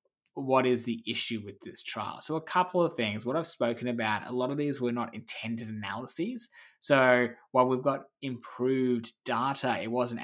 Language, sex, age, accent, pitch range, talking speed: English, male, 20-39, Australian, 115-140 Hz, 190 wpm